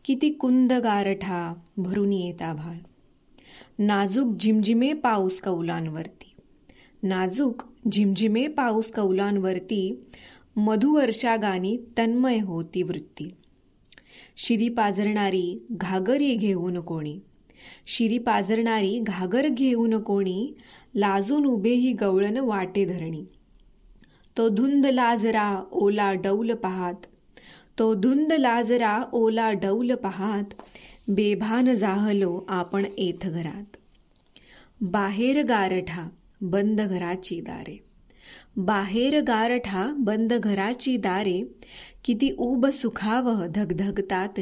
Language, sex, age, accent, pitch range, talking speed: Marathi, female, 20-39, native, 190-240 Hz, 85 wpm